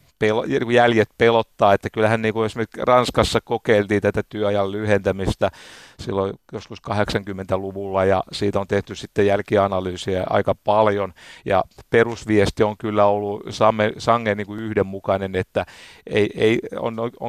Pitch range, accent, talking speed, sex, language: 100-125 Hz, native, 120 wpm, male, Finnish